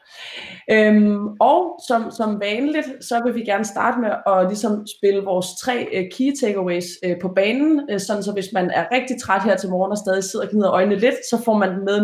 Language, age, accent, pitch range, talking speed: Danish, 20-39, native, 185-235 Hz, 225 wpm